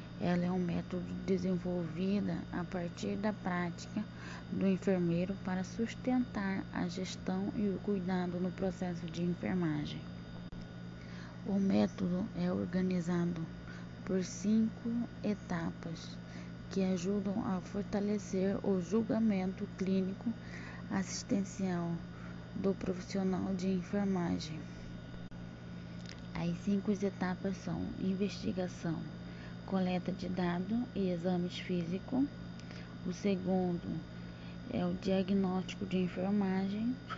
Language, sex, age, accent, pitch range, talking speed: Portuguese, female, 20-39, Brazilian, 155-195 Hz, 95 wpm